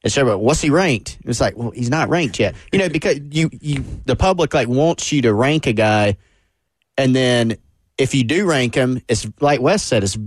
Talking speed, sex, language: 230 wpm, male, English